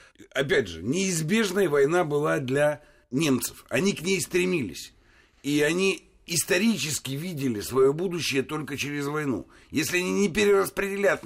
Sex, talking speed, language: male, 130 wpm, Russian